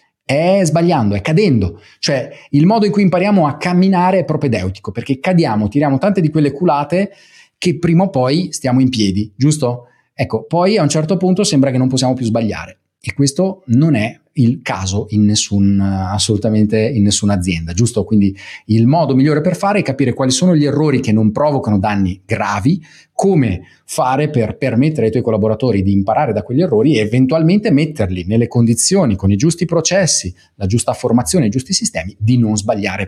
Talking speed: 185 wpm